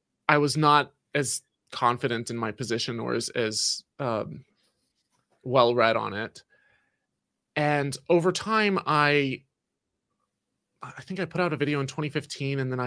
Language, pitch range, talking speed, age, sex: English, 120-140 Hz, 135 wpm, 20-39, male